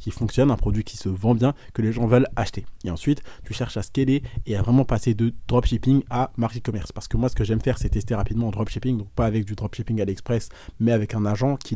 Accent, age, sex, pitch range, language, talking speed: French, 20-39, male, 110-130 Hz, French, 265 wpm